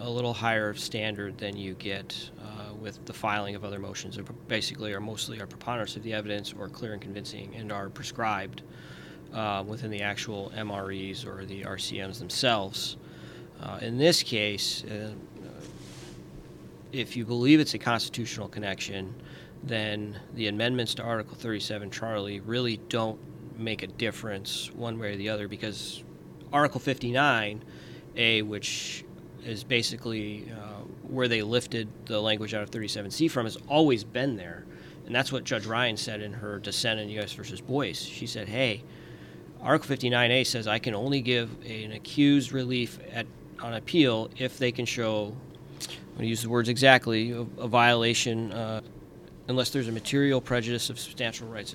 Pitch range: 105-125 Hz